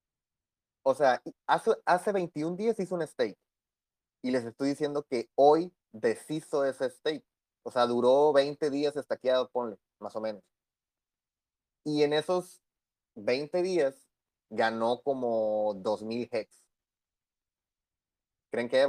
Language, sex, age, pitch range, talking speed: Spanish, male, 30-49, 115-160 Hz, 125 wpm